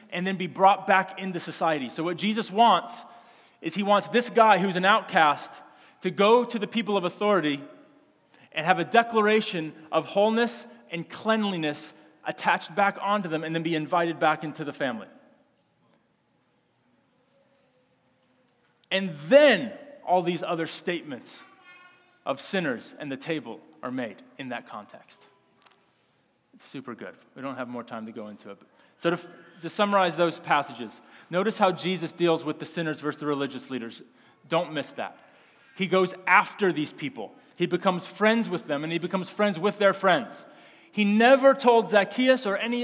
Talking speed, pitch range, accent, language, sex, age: 165 wpm, 160-215 Hz, American, English, male, 30-49